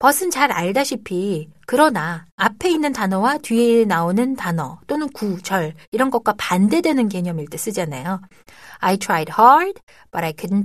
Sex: female